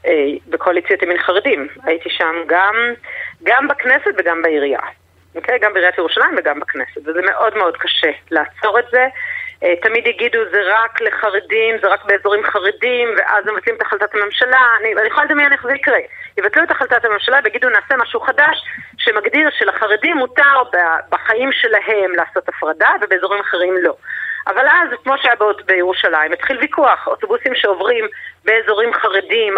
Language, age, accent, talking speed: Hebrew, 30-49, native, 150 wpm